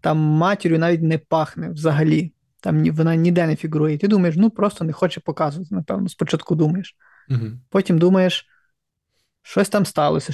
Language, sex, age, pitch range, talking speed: Ukrainian, male, 20-39, 155-185 Hz, 150 wpm